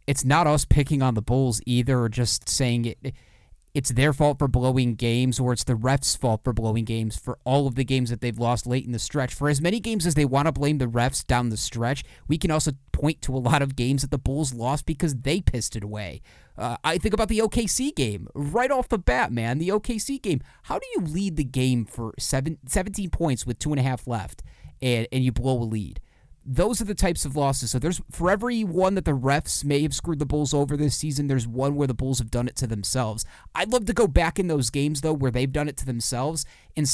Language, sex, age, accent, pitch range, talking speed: English, male, 30-49, American, 120-150 Hz, 250 wpm